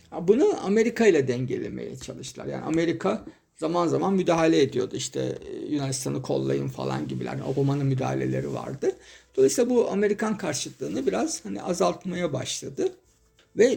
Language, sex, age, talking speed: Turkish, male, 50-69, 120 wpm